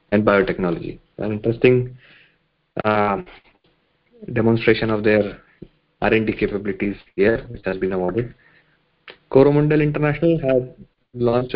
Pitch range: 115-155 Hz